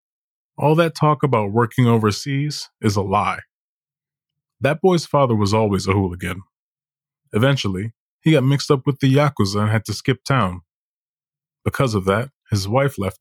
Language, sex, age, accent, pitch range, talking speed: English, male, 20-39, American, 100-145 Hz, 160 wpm